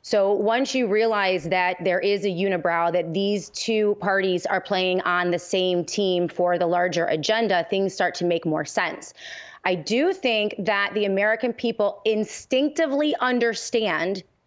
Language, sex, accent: English, female, American